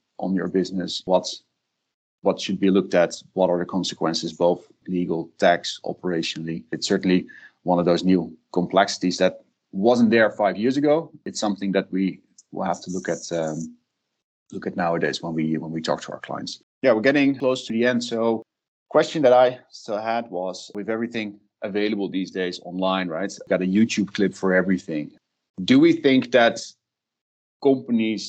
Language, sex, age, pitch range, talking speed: English, male, 30-49, 95-115 Hz, 175 wpm